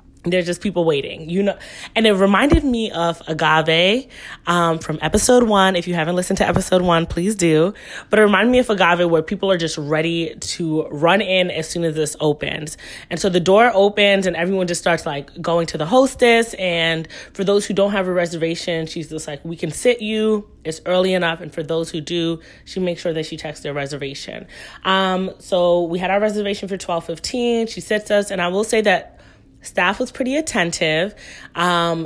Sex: female